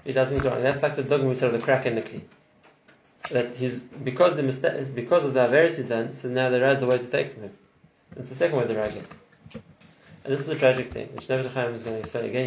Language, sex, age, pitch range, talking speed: English, male, 30-49, 125-150 Hz, 275 wpm